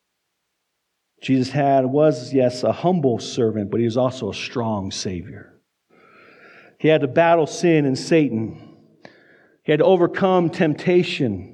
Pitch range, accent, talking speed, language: 135-180 Hz, American, 135 wpm, English